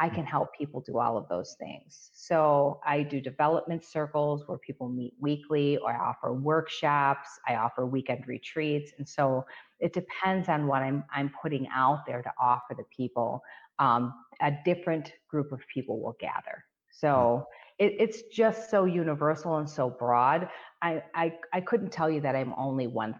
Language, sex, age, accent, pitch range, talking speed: English, female, 40-59, American, 130-165 Hz, 175 wpm